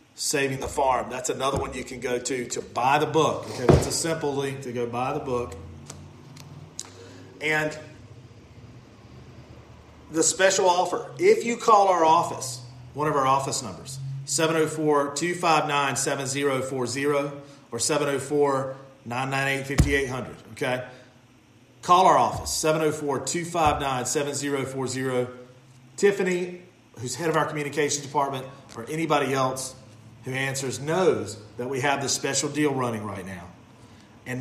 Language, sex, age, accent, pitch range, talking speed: English, male, 40-59, American, 125-150 Hz, 120 wpm